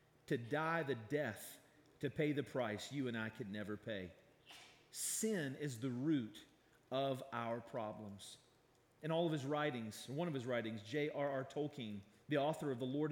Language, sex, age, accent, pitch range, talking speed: English, male, 40-59, American, 125-190 Hz, 175 wpm